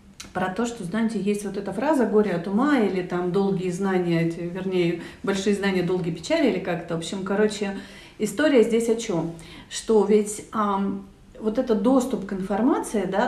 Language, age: Russian, 40-59